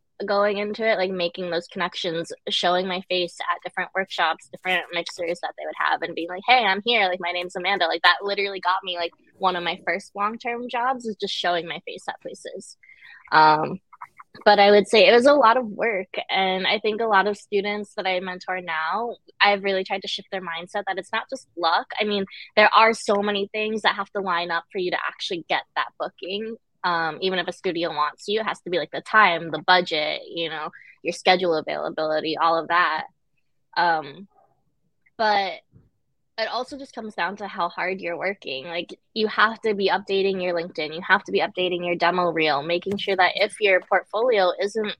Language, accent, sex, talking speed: English, American, female, 215 wpm